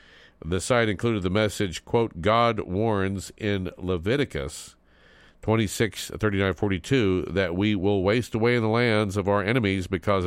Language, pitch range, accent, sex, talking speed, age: English, 90-110 Hz, American, male, 165 wpm, 50-69